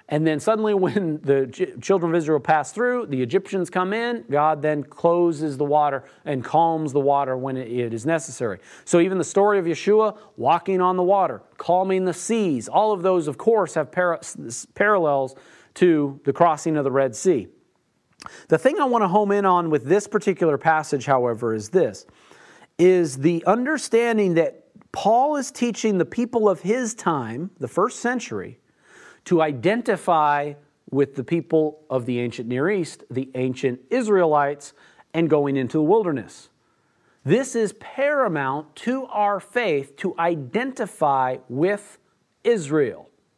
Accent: American